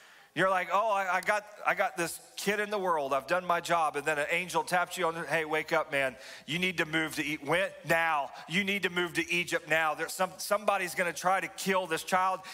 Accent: American